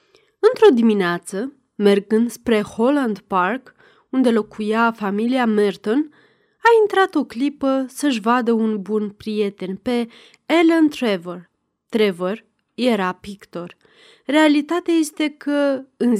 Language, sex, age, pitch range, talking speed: Romanian, female, 30-49, 205-285 Hz, 105 wpm